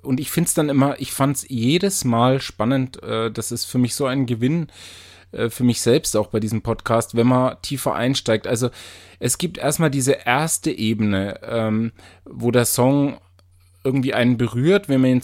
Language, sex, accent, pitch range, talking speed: German, male, German, 110-135 Hz, 195 wpm